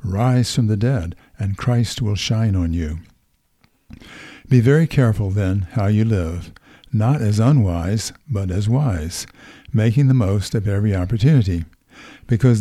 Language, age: English, 60-79